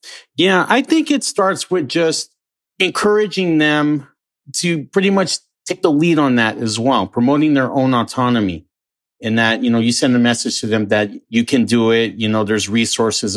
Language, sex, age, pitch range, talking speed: English, male, 40-59, 110-140 Hz, 190 wpm